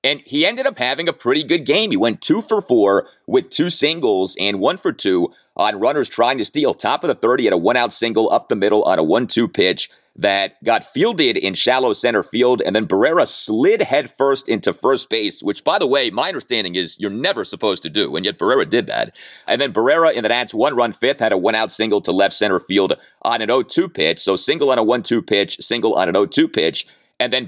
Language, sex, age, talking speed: English, male, 30-49, 235 wpm